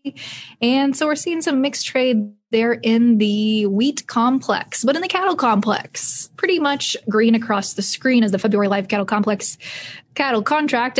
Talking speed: 170 wpm